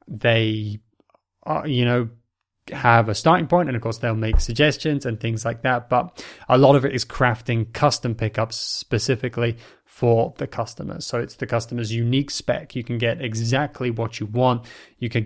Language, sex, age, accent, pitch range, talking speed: English, male, 20-39, British, 110-125 Hz, 180 wpm